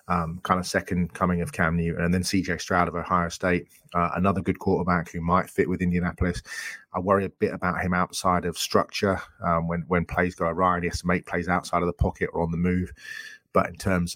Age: 30-49